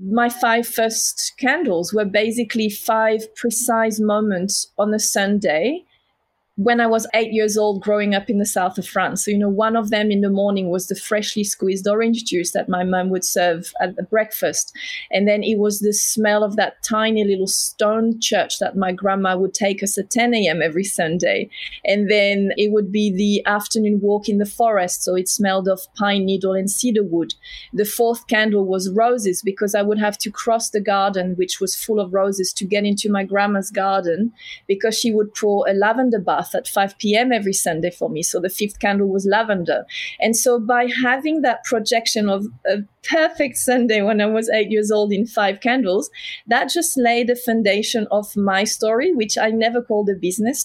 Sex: female